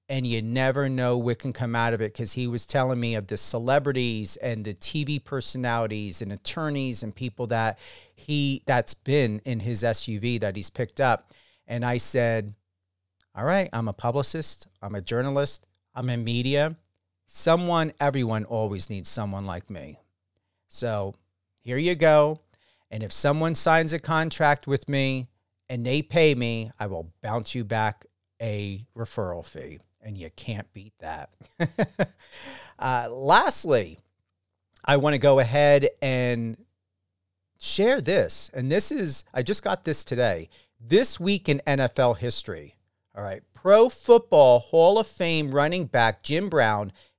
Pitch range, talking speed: 105-150 Hz, 155 wpm